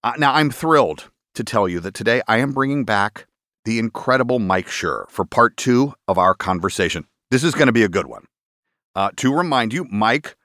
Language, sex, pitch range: English, male, 100-135 Hz